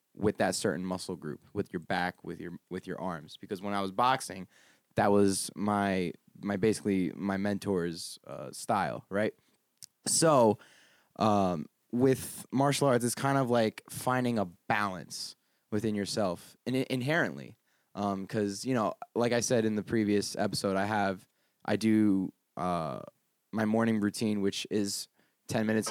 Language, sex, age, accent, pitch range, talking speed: English, male, 20-39, American, 95-110 Hz, 155 wpm